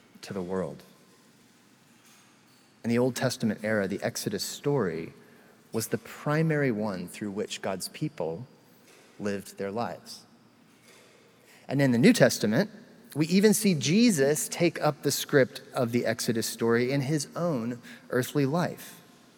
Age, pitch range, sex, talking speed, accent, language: 30-49, 125-175 Hz, male, 135 wpm, American, English